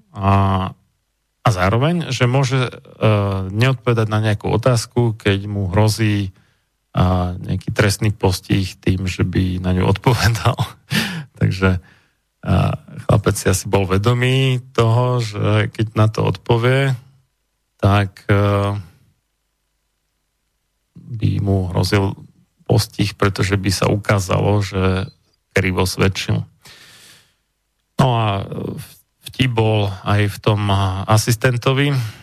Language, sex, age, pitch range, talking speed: Slovak, male, 40-59, 100-125 Hz, 110 wpm